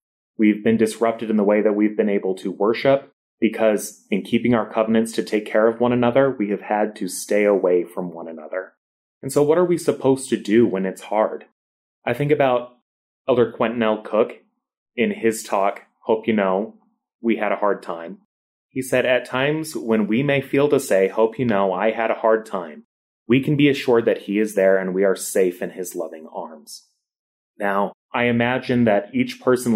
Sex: male